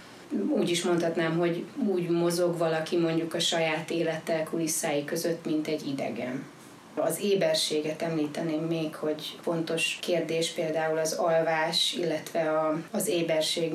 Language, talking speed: Hungarian, 125 wpm